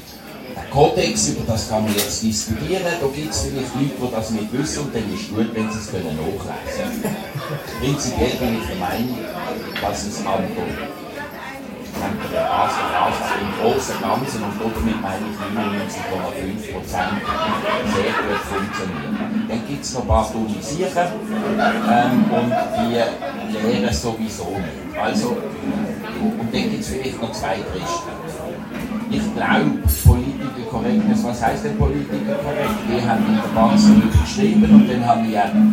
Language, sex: German, male